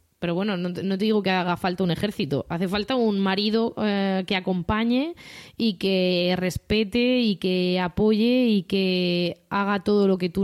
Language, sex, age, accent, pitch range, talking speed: Spanish, female, 20-39, Spanish, 185-215 Hz, 170 wpm